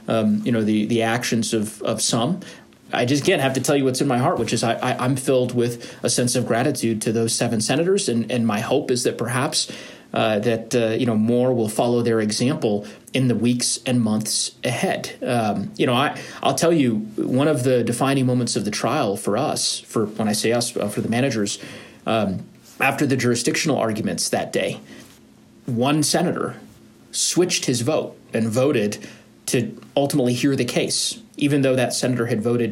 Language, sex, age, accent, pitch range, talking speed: English, male, 30-49, American, 115-145 Hz, 195 wpm